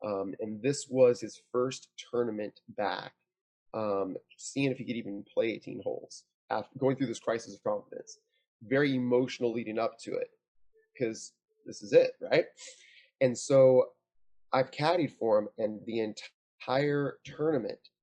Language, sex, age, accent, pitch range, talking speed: English, male, 20-39, American, 110-145 Hz, 150 wpm